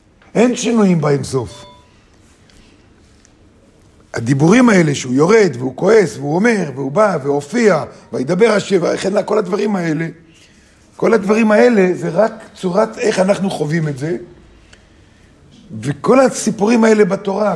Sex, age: male, 50-69